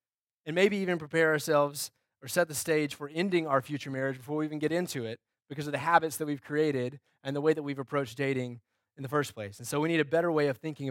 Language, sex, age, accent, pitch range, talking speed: English, male, 20-39, American, 130-155 Hz, 260 wpm